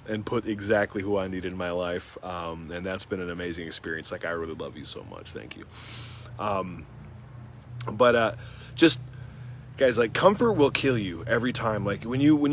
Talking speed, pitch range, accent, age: 195 wpm, 100-125 Hz, American, 30-49